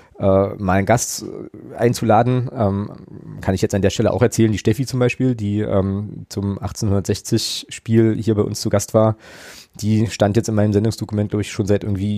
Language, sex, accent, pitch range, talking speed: German, male, German, 100-115 Hz, 175 wpm